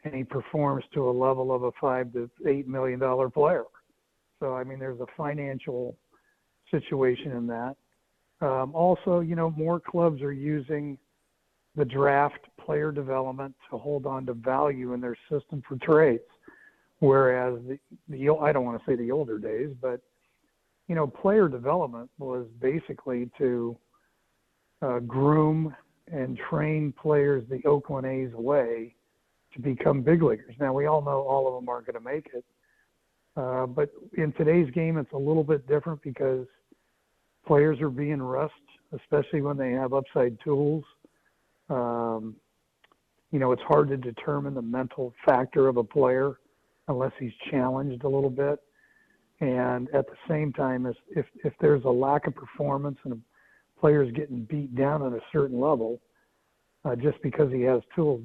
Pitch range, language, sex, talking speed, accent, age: 125-150 Hz, English, male, 165 wpm, American, 60-79